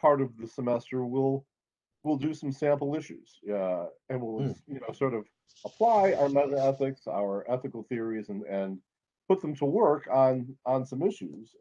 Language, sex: English, male